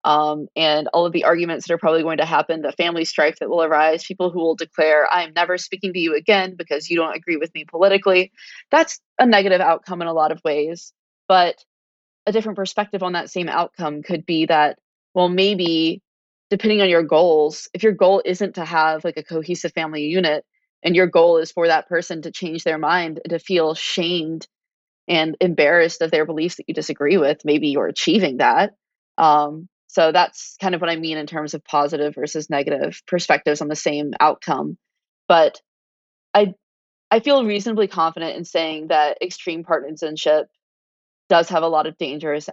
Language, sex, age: English, female, 20-39